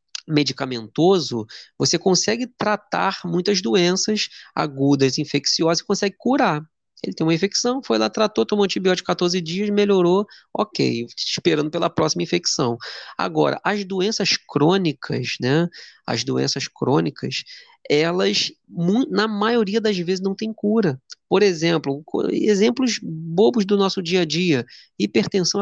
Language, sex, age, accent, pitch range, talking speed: Portuguese, male, 20-39, Brazilian, 140-200 Hz, 125 wpm